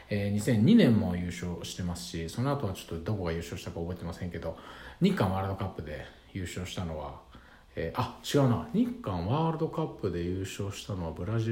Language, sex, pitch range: Japanese, male, 90-130 Hz